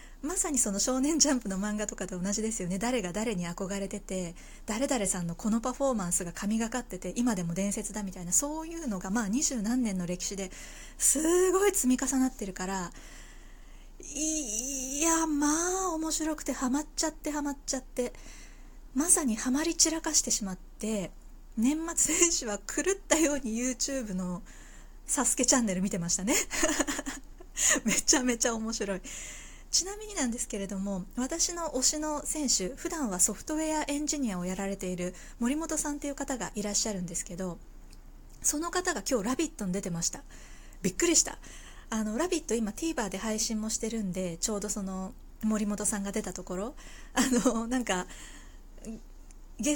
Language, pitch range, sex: Japanese, 195-290 Hz, female